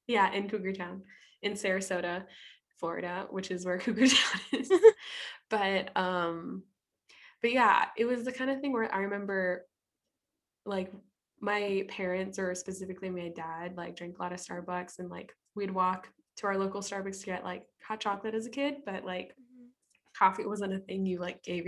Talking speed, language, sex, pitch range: 175 wpm, English, female, 180-205 Hz